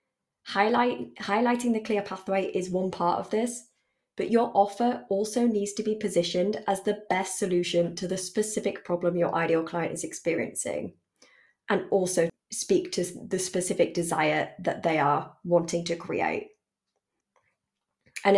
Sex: female